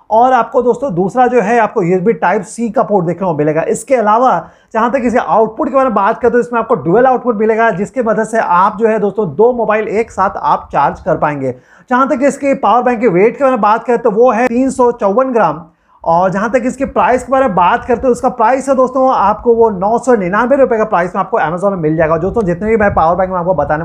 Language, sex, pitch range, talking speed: Hindi, male, 190-240 Hz, 250 wpm